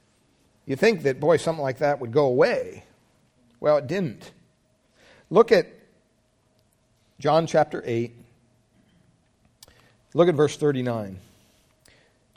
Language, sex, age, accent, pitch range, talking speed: English, male, 50-69, American, 110-150 Hz, 105 wpm